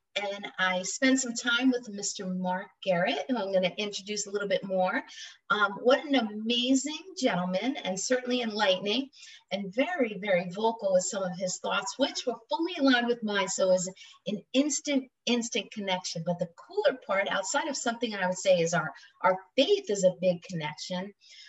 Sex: female